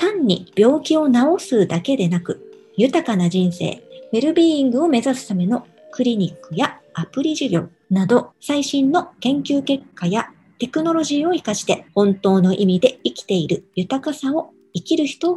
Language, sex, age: Japanese, male, 50-69